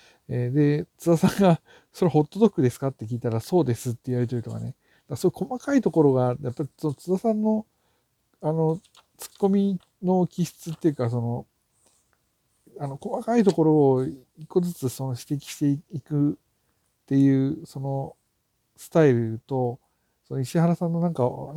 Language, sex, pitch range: Japanese, male, 115-155 Hz